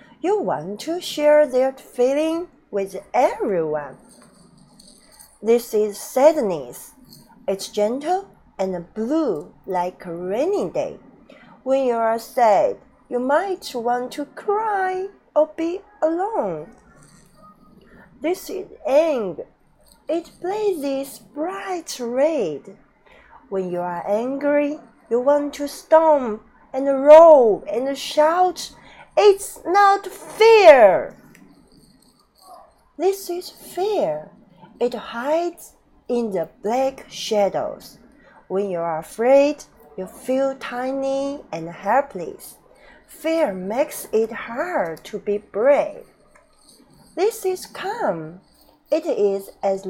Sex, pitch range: female, 205-310 Hz